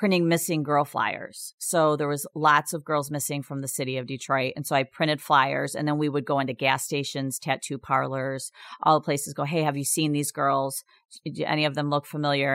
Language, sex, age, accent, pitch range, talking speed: English, female, 40-59, American, 135-160 Hz, 225 wpm